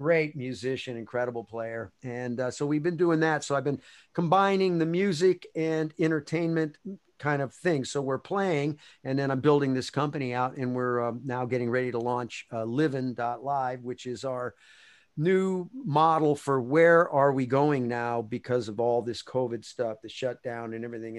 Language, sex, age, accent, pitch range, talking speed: English, male, 50-69, American, 125-155 Hz, 180 wpm